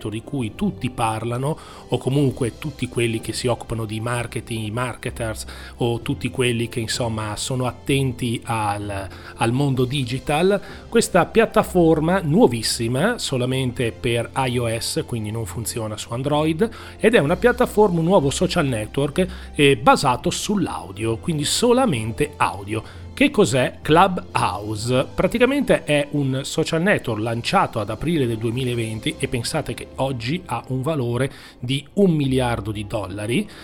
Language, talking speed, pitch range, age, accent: Italian, 135 wpm, 115-150 Hz, 40-59, native